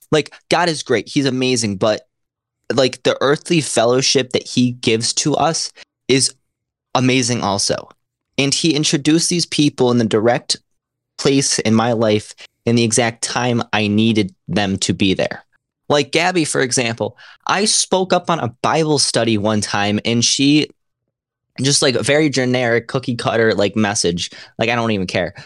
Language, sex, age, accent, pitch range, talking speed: English, male, 20-39, American, 115-150 Hz, 165 wpm